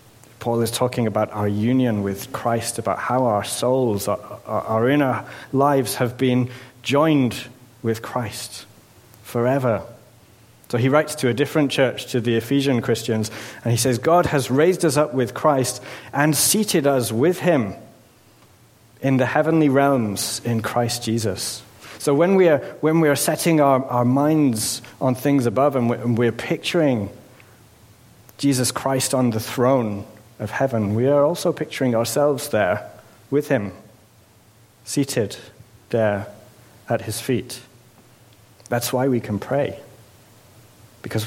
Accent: British